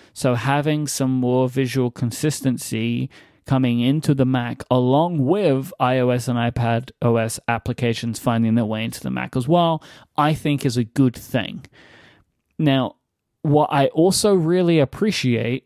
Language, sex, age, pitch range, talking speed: English, male, 20-39, 125-155 Hz, 140 wpm